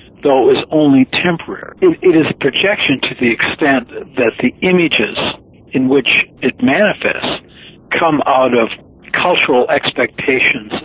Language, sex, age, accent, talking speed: English, male, 60-79, American, 135 wpm